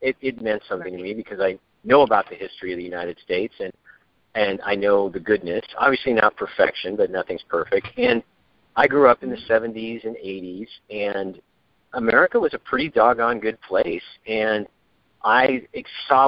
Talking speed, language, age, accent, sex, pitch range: 175 wpm, English, 50-69, American, male, 95-120 Hz